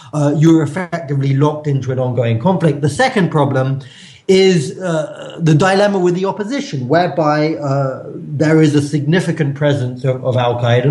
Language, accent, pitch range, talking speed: English, British, 140-170 Hz, 155 wpm